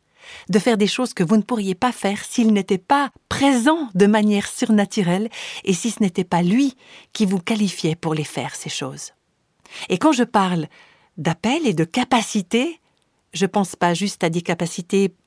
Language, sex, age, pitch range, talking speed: French, female, 50-69, 180-255 Hz, 185 wpm